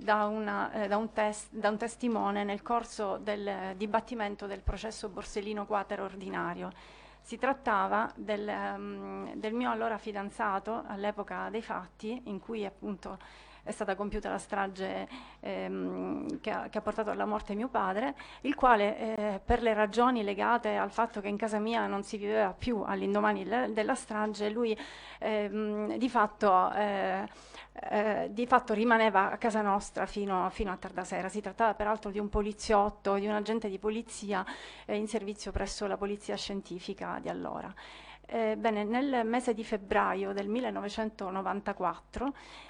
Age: 40-59